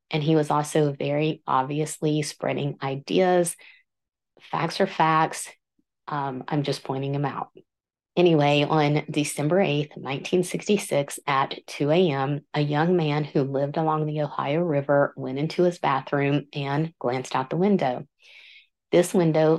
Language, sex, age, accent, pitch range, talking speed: English, female, 30-49, American, 145-170 Hz, 140 wpm